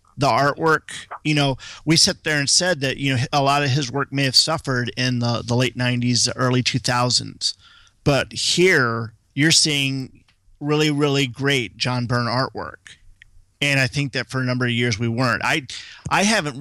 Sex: male